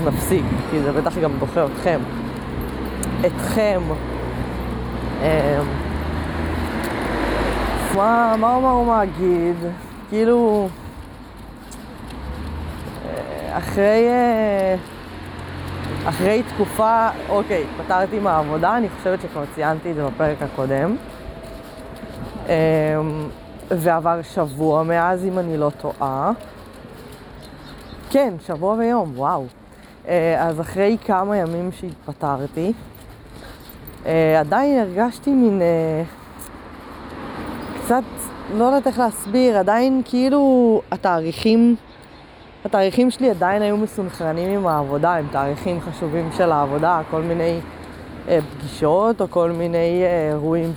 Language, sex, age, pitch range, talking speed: Hebrew, female, 20-39, 145-205 Hz, 90 wpm